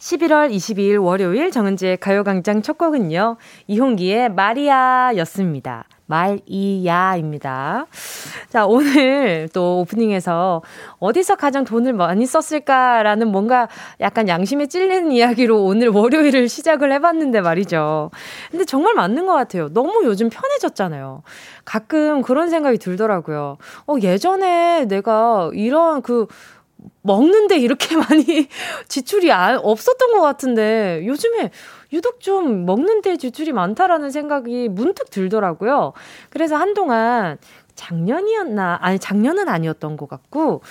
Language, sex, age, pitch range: Korean, female, 20-39, 195-310 Hz